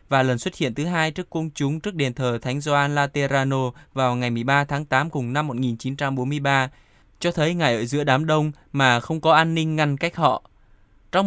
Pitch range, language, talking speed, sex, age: 125-150 Hz, Vietnamese, 210 wpm, male, 20-39